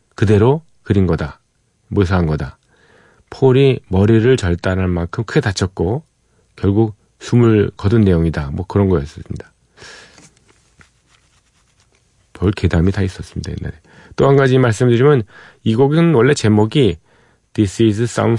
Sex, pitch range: male, 90-120 Hz